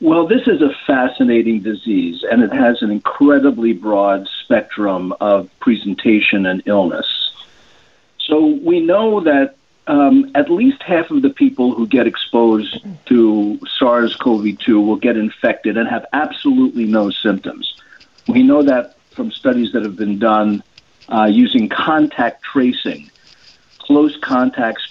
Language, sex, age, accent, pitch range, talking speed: English, male, 50-69, American, 110-155 Hz, 135 wpm